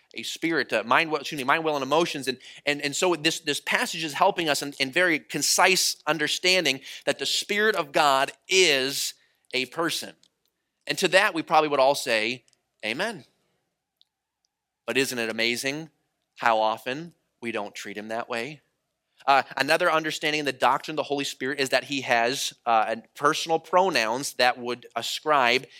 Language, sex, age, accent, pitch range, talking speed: English, male, 30-49, American, 135-175 Hz, 170 wpm